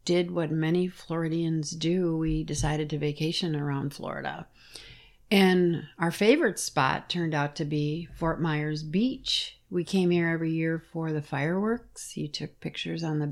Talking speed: 160 wpm